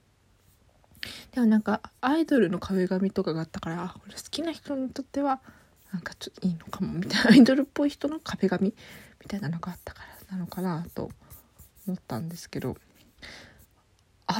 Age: 20-39